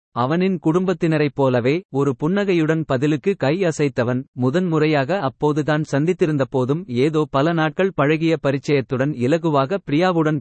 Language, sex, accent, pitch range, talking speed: Tamil, male, native, 125-165 Hz, 100 wpm